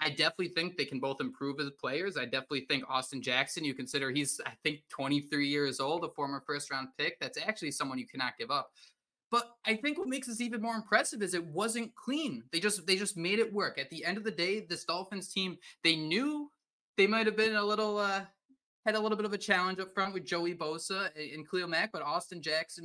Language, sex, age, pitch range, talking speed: English, male, 20-39, 145-195 Hz, 235 wpm